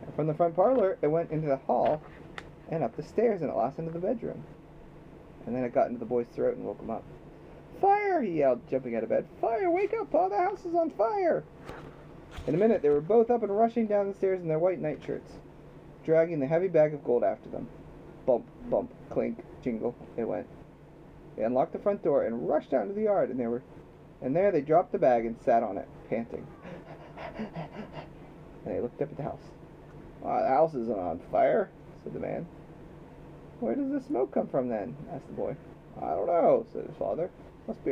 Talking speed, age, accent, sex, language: 215 wpm, 30-49, American, male, English